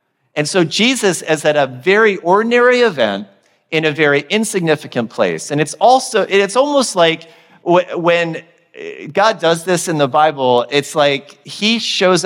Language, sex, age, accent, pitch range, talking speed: English, male, 40-59, American, 125-180 Hz, 150 wpm